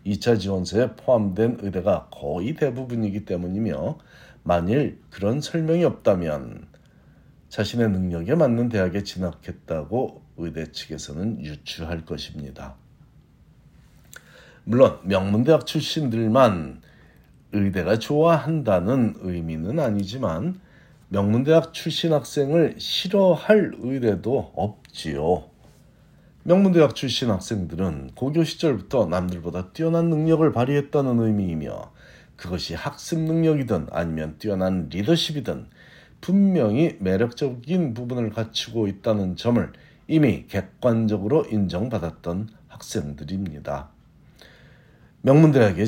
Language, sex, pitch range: Korean, male, 95-150 Hz